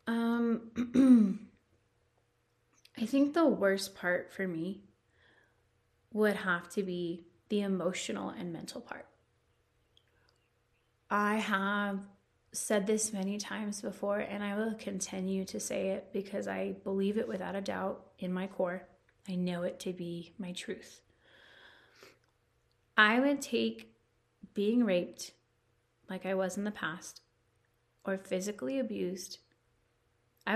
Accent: American